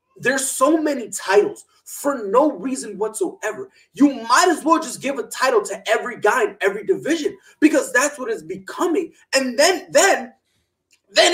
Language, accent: English, American